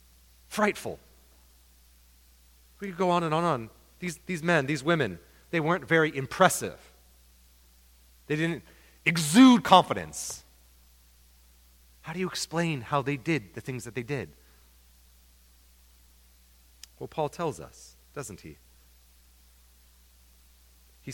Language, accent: English, American